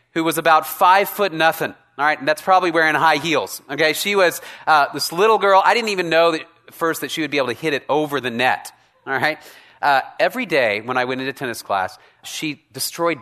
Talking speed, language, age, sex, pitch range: 230 wpm, English, 30-49, male, 145-205 Hz